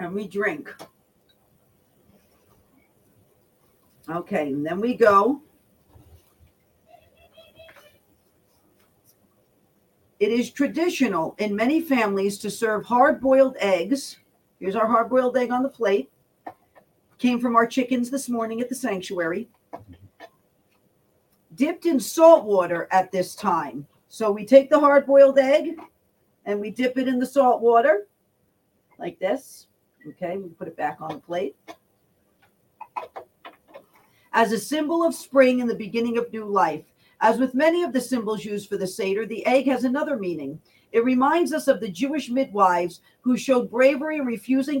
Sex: female